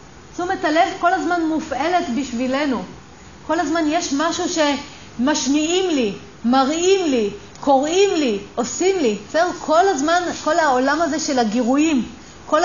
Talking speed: 125 wpm